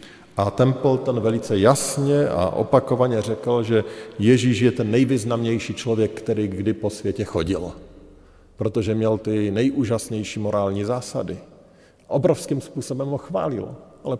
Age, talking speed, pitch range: 50-69, 125 wpm, 95-120 Hz